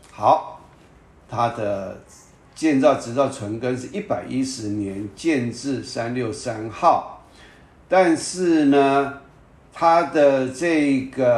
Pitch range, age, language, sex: 110-145 Hz, 50-69, Chinese, male